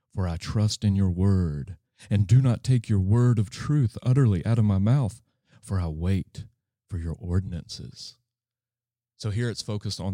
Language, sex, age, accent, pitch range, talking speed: English, male, 30-49, American, 95-120 Hz, 180 wpm